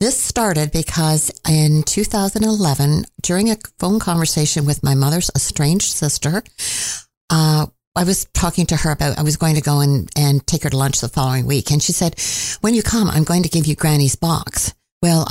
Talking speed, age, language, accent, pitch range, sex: 190 wpm, 60-79, English, American, 140-165 Hz, female